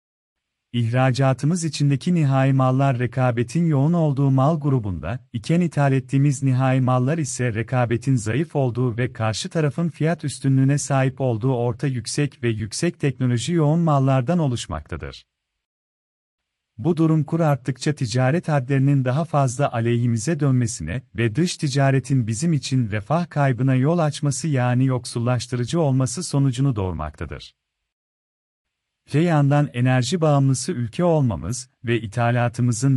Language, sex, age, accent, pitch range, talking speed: Turkish, male, 40-59, native, 120-150 Hz, 120 wpm